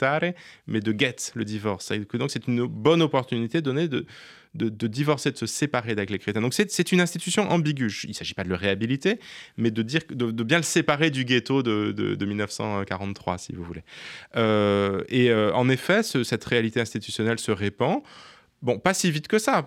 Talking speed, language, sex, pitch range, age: 210 wpm, French, male, 110-155 Hz, 20-39